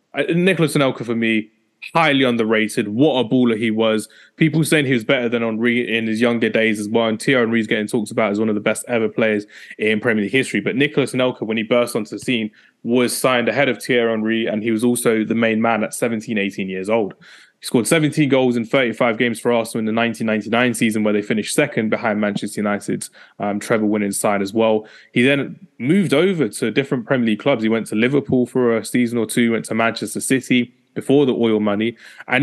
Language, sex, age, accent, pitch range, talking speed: English, male, 20-39, British, 110-130 Hz, 220 wpm